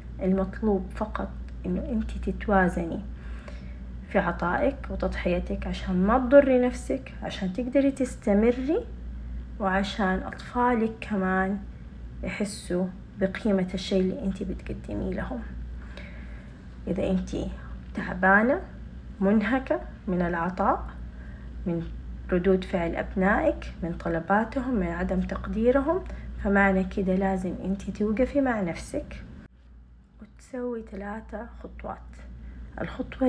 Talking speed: 90 wpm